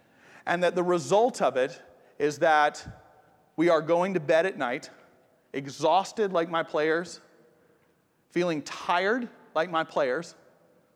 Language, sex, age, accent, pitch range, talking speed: English, male, 40-59, American, 150-180 Hz, 130 wpm